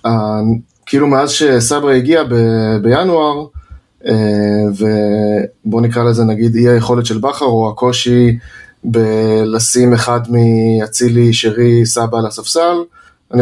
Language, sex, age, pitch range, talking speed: Hebrew, male, 20-39, 115-130 Hz, 115 wpm